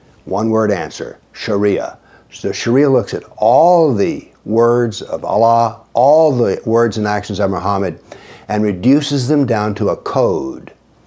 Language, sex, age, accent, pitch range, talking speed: English, male, 60-79, American, 105-125 Hz, 145 wpm